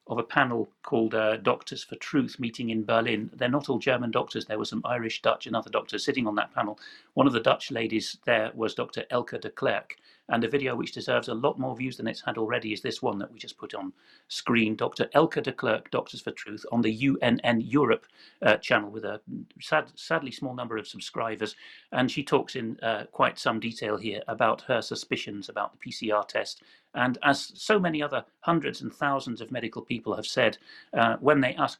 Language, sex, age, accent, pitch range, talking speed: English, male, 40-59, British, 110-135 Hz, 215 wpm